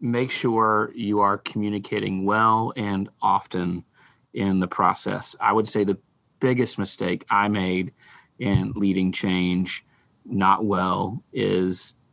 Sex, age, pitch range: male, 30-49, 100-120 Hz